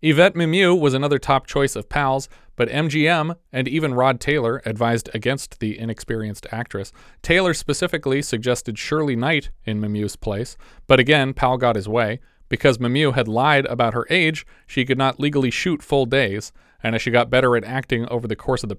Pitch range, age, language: 115-145 Hz, 30-49, English